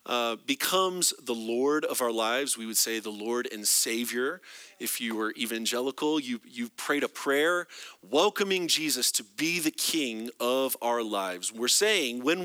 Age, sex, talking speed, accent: 30-49, male, 170 wpm, American